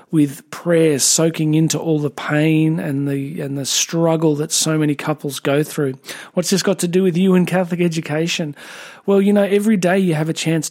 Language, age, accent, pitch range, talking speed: English, 40-59, Australian, 155-185 Hz, 205 wpm